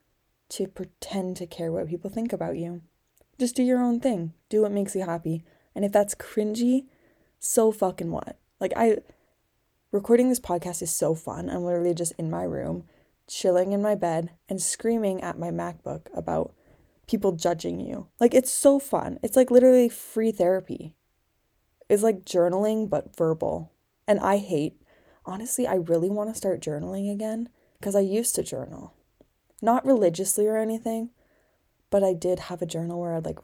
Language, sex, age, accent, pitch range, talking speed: English, female, 20-39, American, 175-215 Hz, 170 wpm